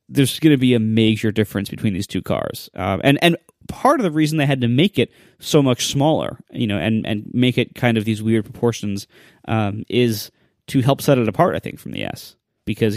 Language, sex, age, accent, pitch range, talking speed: English, male, 20-39, American, 110-135 Hz, 230 wpm